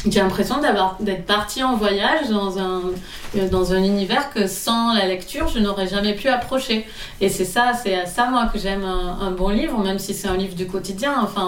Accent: French